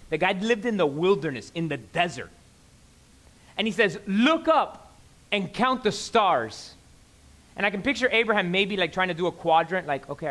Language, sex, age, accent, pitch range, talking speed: English, male, 30-49, American, 185-295 Hz, 185 wpm